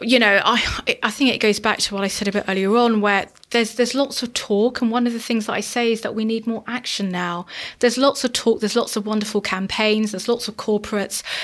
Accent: British